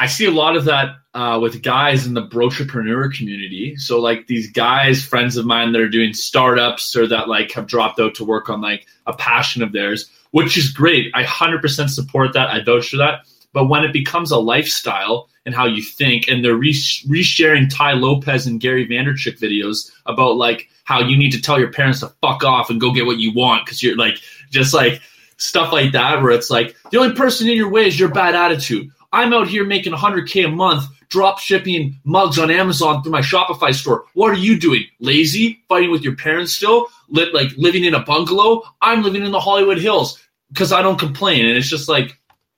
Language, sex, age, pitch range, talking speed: English, male, 20-39, 120-170 Hz, 220 wpm